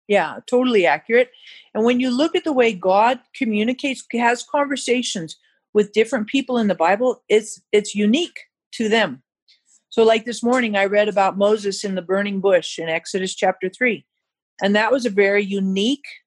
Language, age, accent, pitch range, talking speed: English, 50-69, American, 210-270 Hz, 175 wpm